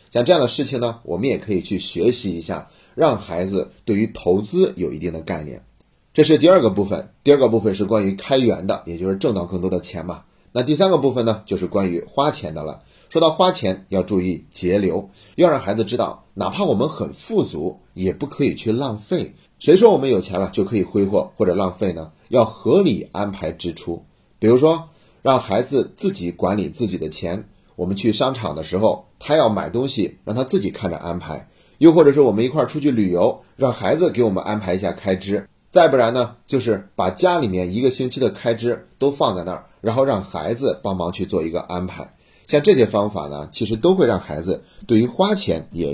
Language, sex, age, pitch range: Chinese, male, 30-49, 90-125 Hz